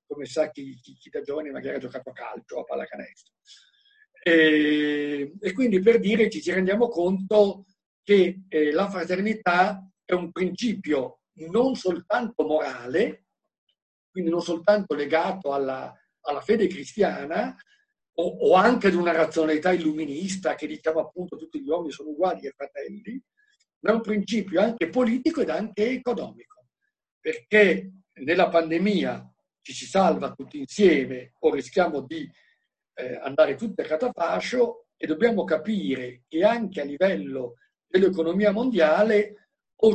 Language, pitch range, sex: Italian, 155-225 Hz, male